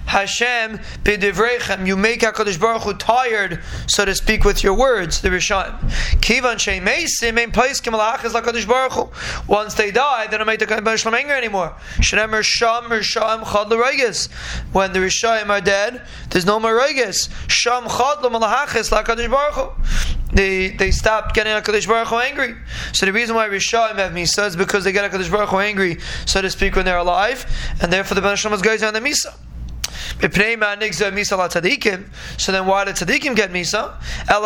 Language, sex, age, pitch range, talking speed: English, male, 20-39, 195-230 Hz, 170 wpm